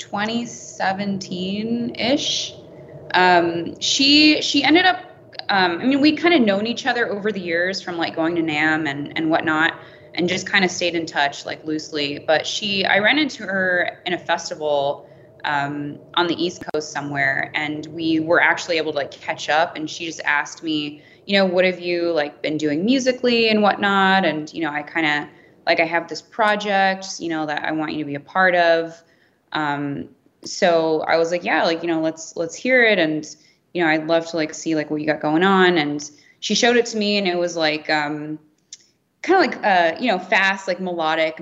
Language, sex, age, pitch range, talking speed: English, female, 20-39, 155-195 Hz, 210 wpm